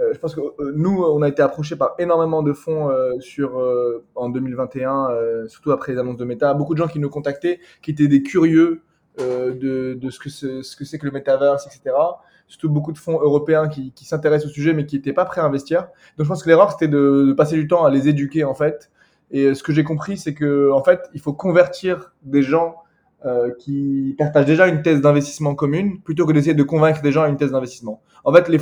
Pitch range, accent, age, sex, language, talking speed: 135-160 Hz, French, 20-39, male, French, 235 wpm